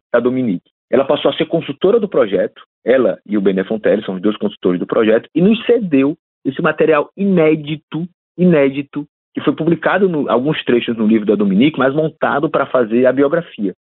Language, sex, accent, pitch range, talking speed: Portuguese, male, Brazilian, 120-165 Hz, 185 wpm